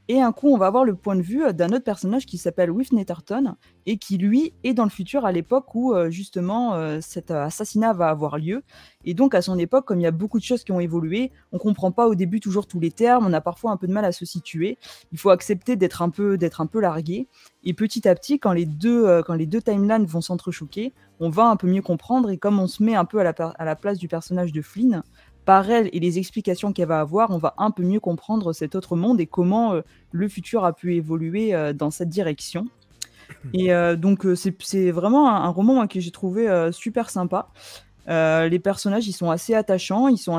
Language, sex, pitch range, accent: French, female, 170-220 Hz, French